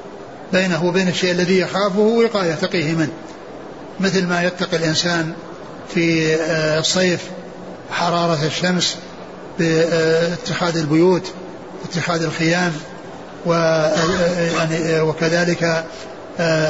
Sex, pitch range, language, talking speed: male, 160-185 Hz, Arabic, 80 wpm